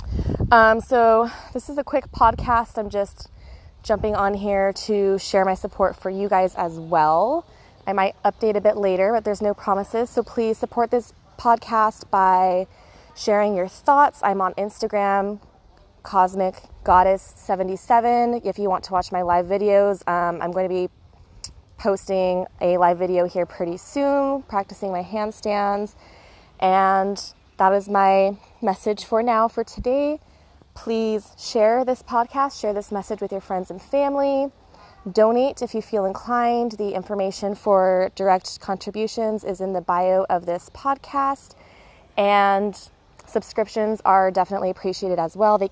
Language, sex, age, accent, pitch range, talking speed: English, female, 20-39, American, 185-220 Hz, 145 wpm